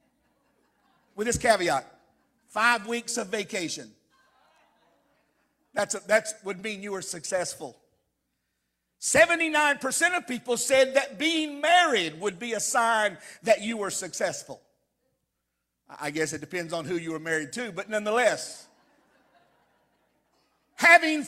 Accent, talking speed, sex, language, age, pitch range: American, 120 wpm, male, English, 50-69, 220-310 Hz